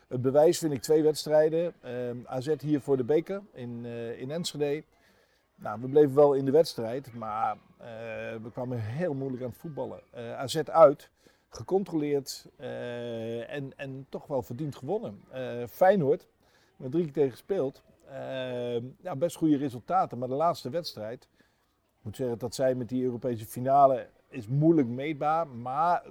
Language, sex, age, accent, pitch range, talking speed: Dutch, male, 50-69, Dutch, 120-150 Hz, 160 wpm